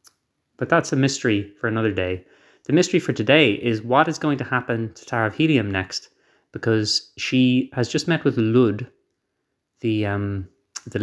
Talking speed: 175 wpm